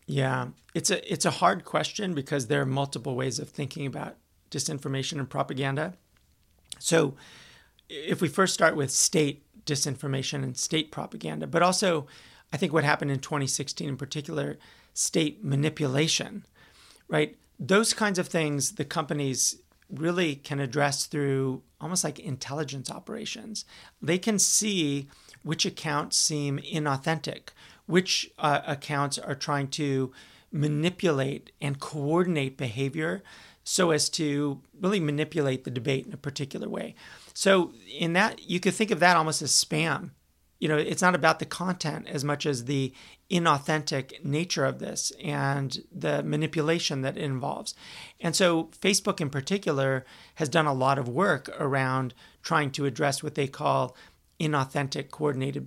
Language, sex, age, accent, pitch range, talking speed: English, male, 40-59, American, 135-170 Hz, 145 wpm